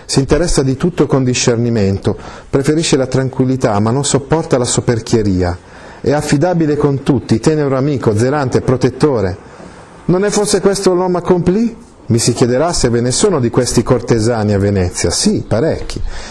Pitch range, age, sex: 115-165 Hz, 40-59, male